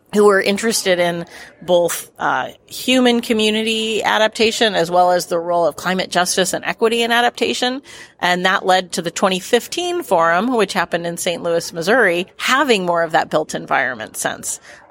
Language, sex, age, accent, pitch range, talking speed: English, female, 40-59, American, 175-230 Hz, 165 wpm